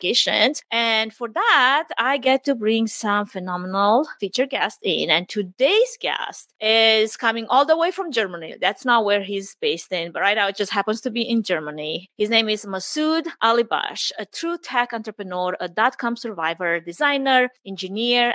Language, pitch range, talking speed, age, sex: English, 185-255 Hz, 170 wpm, 30-49, female